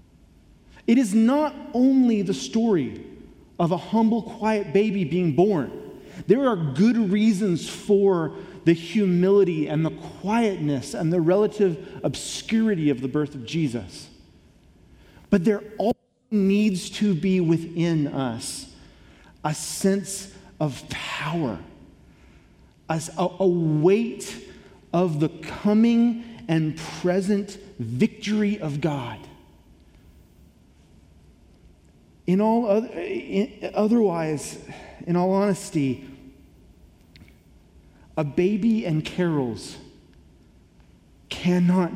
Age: 30-49